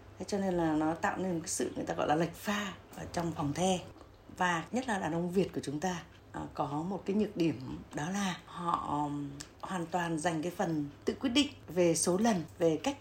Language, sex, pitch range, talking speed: Vietnamese, female, 155-210 Hz, 220 wpm